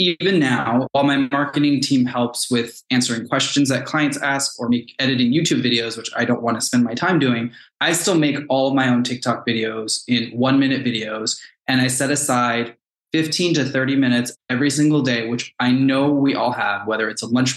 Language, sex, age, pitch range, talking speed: English, male, 20-39, 120-140 Hz, 205 wpm